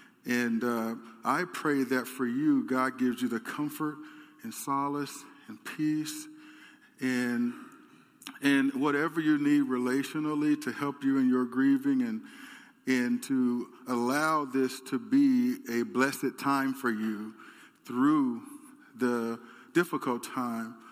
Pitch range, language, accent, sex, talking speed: 125-155 Hz, English, American, male, 125 wpm